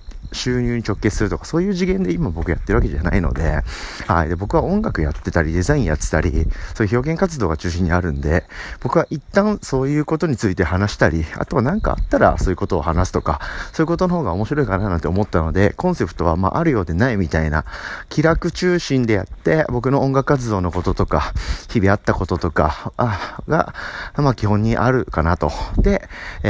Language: Japanese